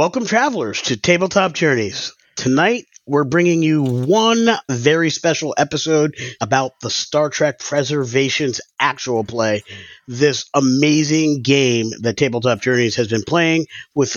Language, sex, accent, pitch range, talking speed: English, male, American, 130-165 Hz, 125 wpm